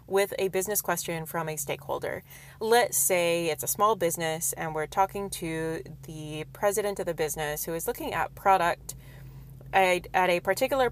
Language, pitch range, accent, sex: English, 155-210 Hz, American, female